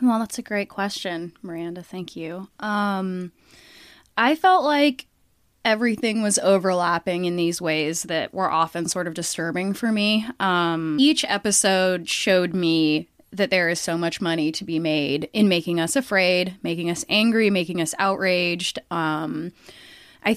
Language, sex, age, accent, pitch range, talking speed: English, female, 20-39, American, 170-200 Hz, 155 wpm